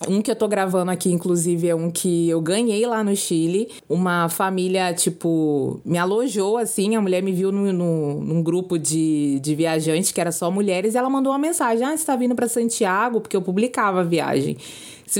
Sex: female